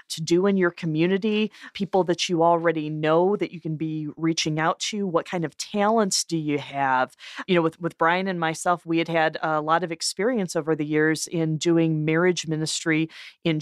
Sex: female